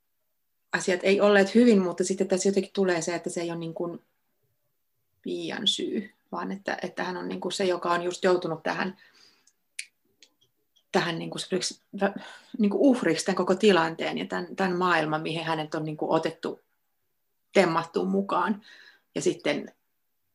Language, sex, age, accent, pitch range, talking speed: Finnish, female, 30-49, native, 175-205 Hz, 155 wpm